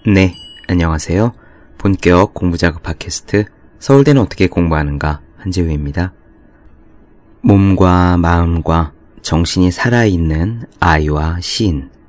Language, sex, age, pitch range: Korean, male, 30-49, 75-95 Hz